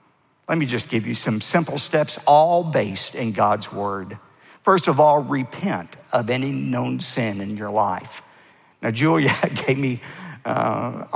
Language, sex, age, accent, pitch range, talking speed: English, male, 50-69, American, 115-170 Hz, 155 wpm